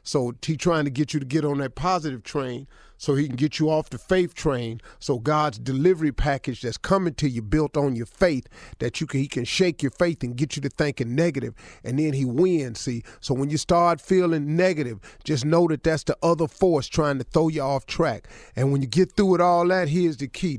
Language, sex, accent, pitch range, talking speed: English, male, American, 115-150 Hz, 240 wpm